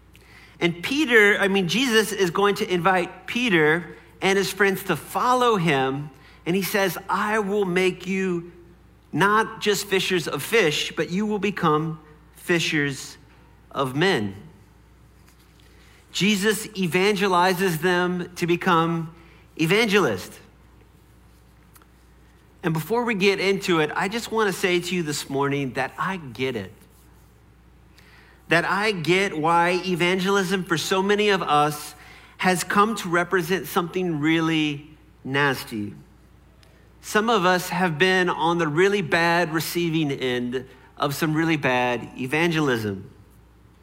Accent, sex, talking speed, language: American, male, 125 wpm, English